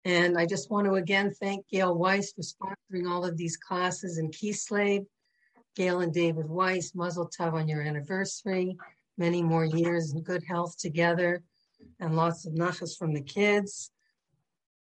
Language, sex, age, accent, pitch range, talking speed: English, female, 60-79, American, 170-205 Hz, 160 wpm